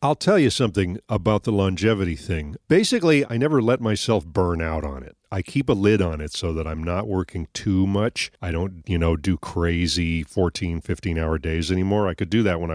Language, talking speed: English, 210 wpm